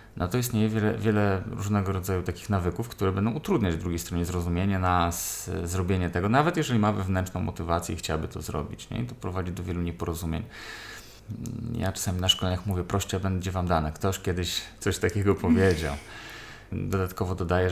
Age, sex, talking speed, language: 20-39, male, 175 wpm, Polish